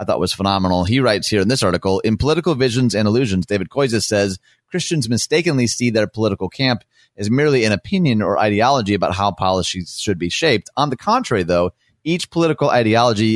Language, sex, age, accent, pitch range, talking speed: English, male, 30-49, American, 95-120 Hz, 195 wpm